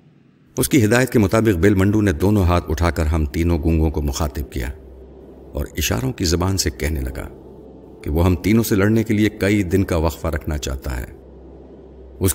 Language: Urdu